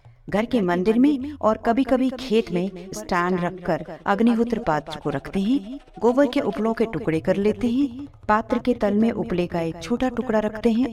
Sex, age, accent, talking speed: female, 50-69, native, 200 wpm